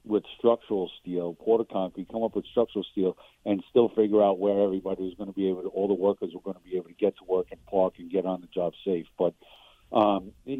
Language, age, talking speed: English, 50-69, 250 wpm